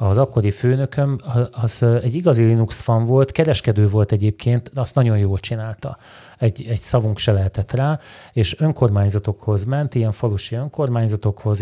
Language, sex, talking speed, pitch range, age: Hungarian, male, 145 wpm, 105-125 Hz, 30-49